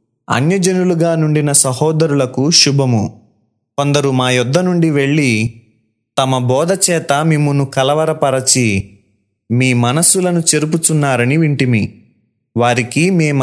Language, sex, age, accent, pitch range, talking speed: Telugu, male, 20-39, native, 125-160 Hz, 85 wpm